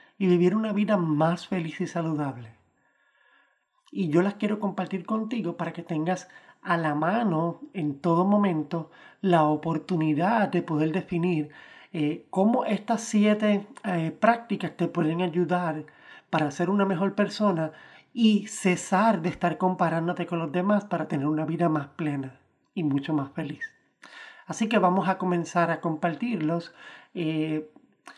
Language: Spanish